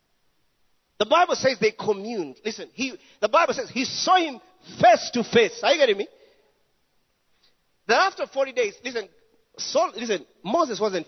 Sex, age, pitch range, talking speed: male, 40-59, 185-285 Hz, 145 wpm